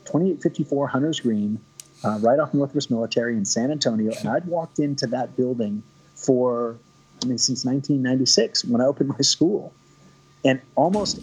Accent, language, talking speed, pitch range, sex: American, English, 155 wpm, 125-150 Hz, male